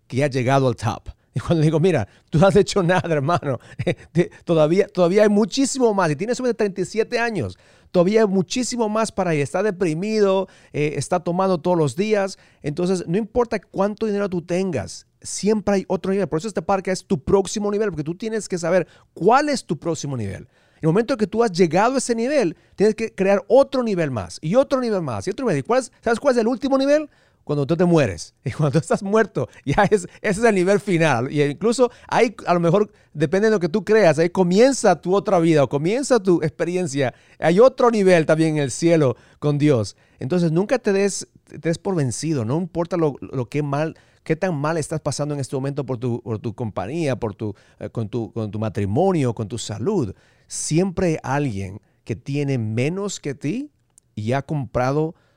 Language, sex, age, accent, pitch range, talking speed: English, male, 40-59, Mexican, 140-200 Hz, 210 wpm